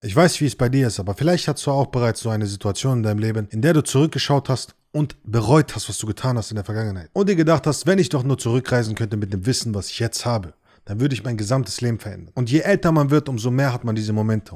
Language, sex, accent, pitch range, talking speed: German, male, German, 110-145 Hz, 285 wpm